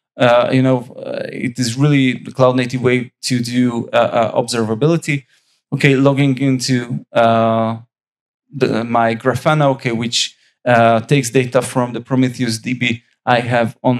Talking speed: 150 wpm